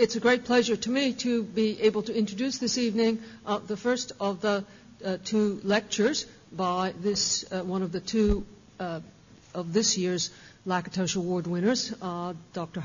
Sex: female